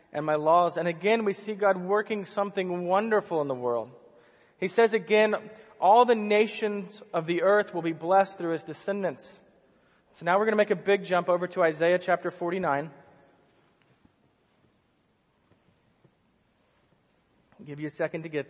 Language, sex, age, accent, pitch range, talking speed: English, male, 30-49, American, 165-205 Hz, 160 wpm